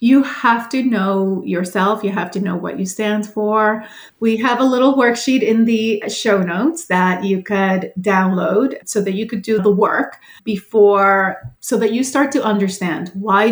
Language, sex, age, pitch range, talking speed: English, female, 30-49, 190-225 Hz, 180 wpm